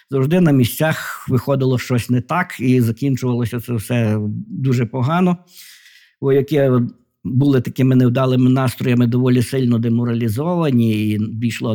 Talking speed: 120 wpm